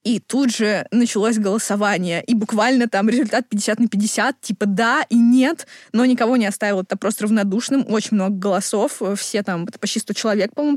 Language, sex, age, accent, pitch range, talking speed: Russian, female, 20-39, native, 205-255 Hz, 185 wpm